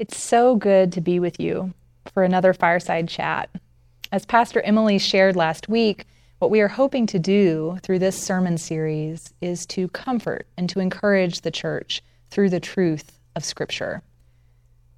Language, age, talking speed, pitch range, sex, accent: English, 30-49, 160 wpm, 155-200 Hz, female, American